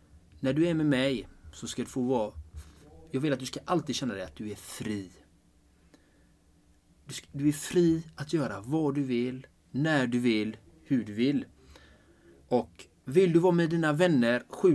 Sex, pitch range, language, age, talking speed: male, 105-150 Hz, Swedish, 30-49, 180 wpm